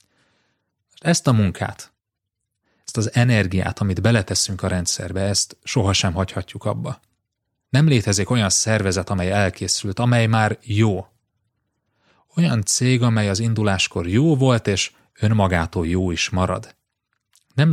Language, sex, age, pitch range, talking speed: Hungarian, male, 30-49, 95-120 Hz, 120 wpm